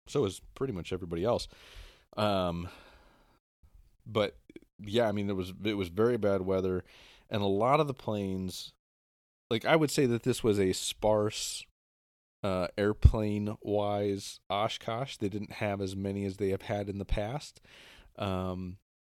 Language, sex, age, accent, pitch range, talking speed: English, male, 30-49, American, 85-105 Hz, 155 wpm